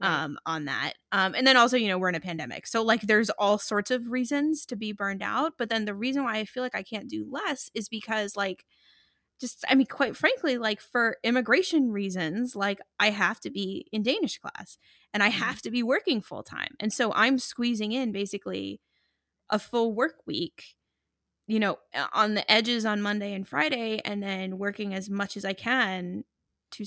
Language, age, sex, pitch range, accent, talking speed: English, 20-39, female, 195-245 Hz, American, 205 wpm